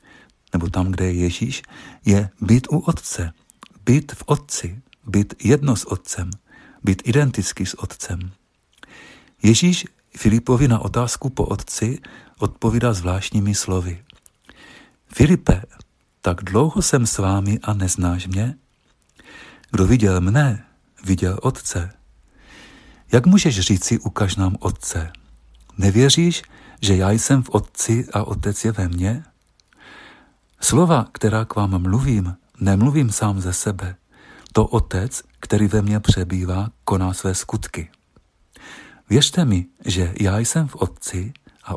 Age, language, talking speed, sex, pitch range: 50-69, Czech, 125 wpm, male, 95-120 Hz